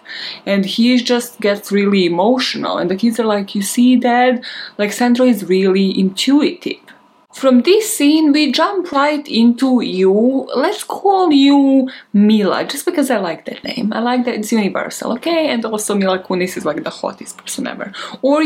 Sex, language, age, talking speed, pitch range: female, English, 20-39, 175 wpm, 200-265 Hz